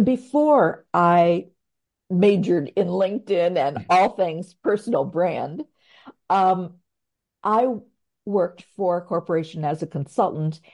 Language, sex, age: English, female, 50-69